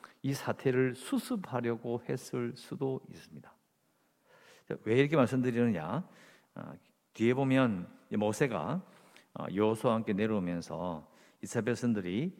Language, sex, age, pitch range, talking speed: English, male, 50-69, 105-145 Hz, 80 wpm